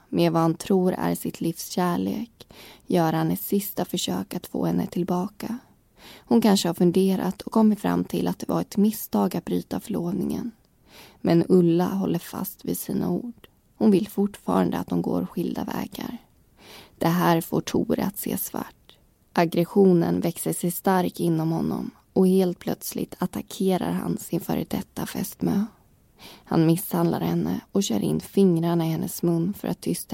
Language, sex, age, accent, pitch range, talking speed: Swedish, female, 20-39, native, 160-200 Hz, 165 wpm